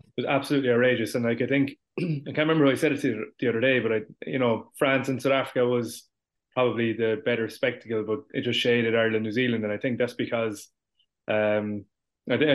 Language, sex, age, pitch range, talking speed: English, male, 20-39, 110-125 Hz, 230 wpm